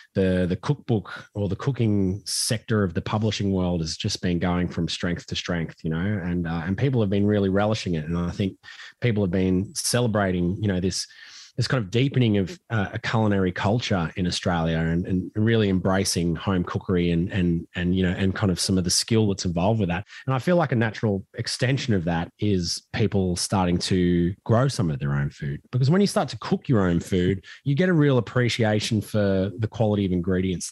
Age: 20-39